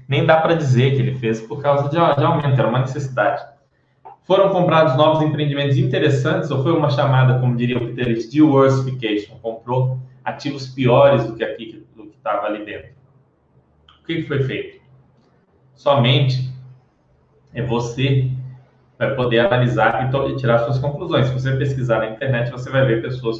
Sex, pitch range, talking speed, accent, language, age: male, 120-150 Hz, 160 wpm, Brazilian, Portuguese, 20-39